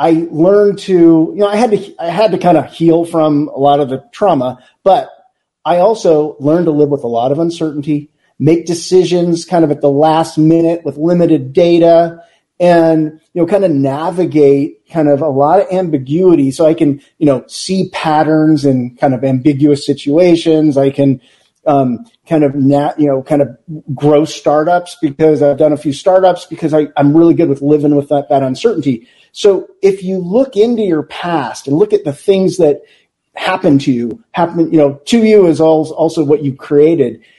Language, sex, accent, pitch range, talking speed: English, male, American, 140-170 Hz, 195 wpm